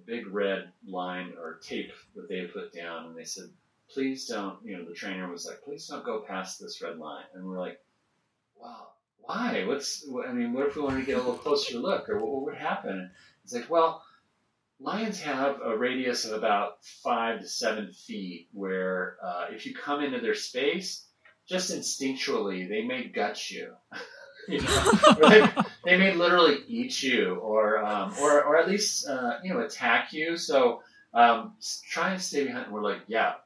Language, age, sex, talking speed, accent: English, 30-49, male, 195 wpm, American